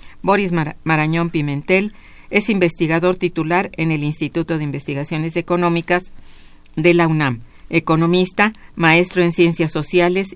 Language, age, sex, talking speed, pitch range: Spanish, 50-69, female, 115 wpm, 145-175 Hz